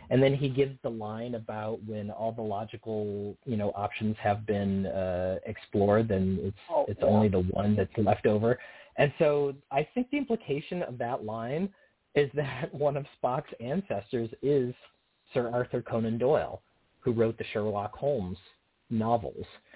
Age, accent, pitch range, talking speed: 30-49, American, 105-135 Hz, 160 wpm